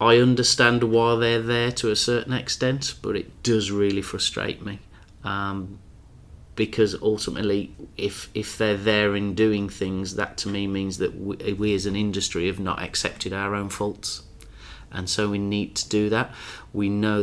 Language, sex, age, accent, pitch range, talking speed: English, male, 30-49, British, 95-105 Hz, 175 wpm